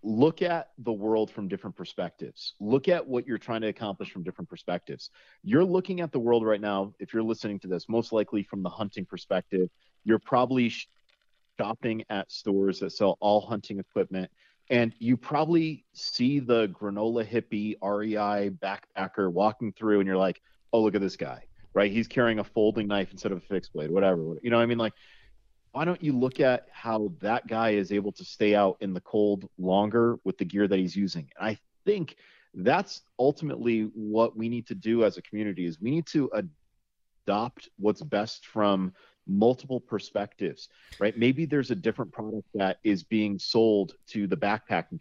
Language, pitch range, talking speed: English, 100-125 Hz, 190 wpm